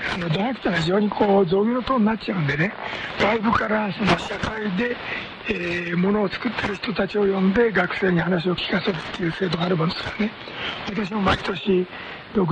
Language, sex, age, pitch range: Korean, male, 60-79, 180-215 Hz